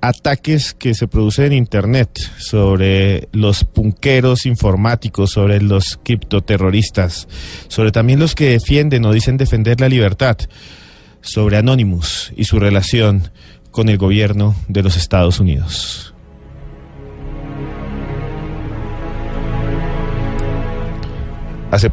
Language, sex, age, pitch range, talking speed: English, male, 40-59, 100-130 Hz, 100 wpm